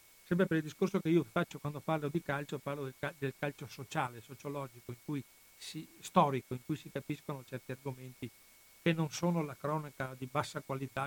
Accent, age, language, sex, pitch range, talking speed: native, 60-79, Italian, male, 125-150 Hz, 185 wpm